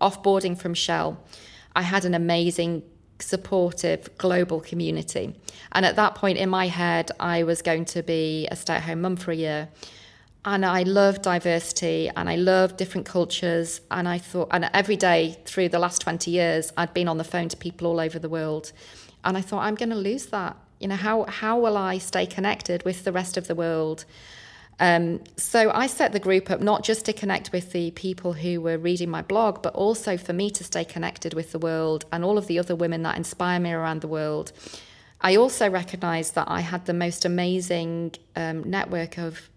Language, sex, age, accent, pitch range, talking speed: English, female, 40-59, British, 165-190 Hz, 205 wpm